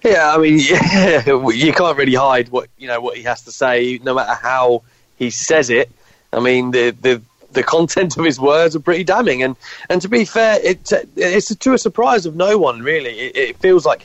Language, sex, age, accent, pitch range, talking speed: English, male, 30-49, British, 125-160 Hz, 225 wpm